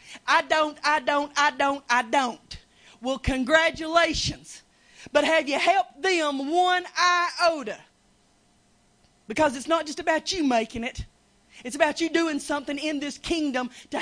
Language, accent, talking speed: English, American, 145 wpm